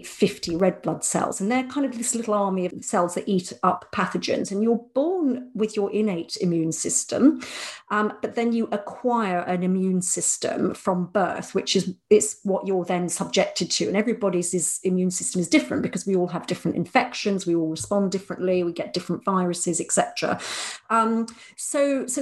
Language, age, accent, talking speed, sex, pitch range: English, 40-59, British, 185 wpm, female, 175-230 Hz